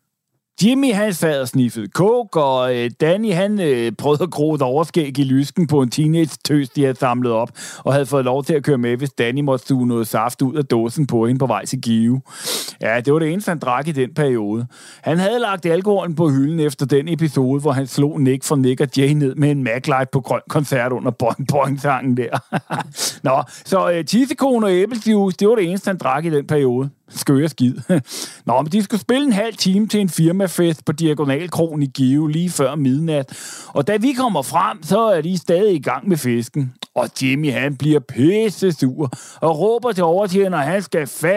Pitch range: 135-185 Hz